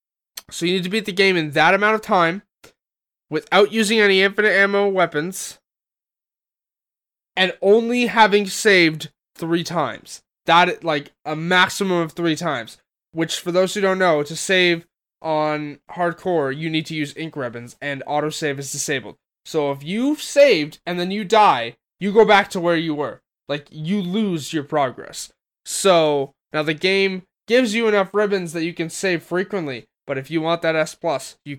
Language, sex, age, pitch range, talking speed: English, male, 20-39, 145-185 Hz, 175 wpm